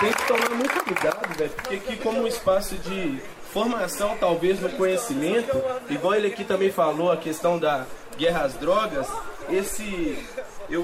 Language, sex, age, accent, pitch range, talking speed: Portuguese, male, 20-39, Brazilian, 190-260 Hz, 160 wpm